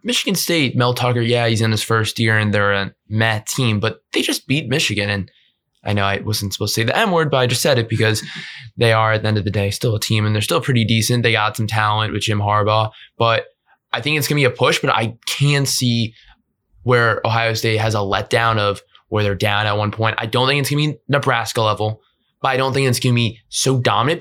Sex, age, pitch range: male, 20-39, 105-130 Hz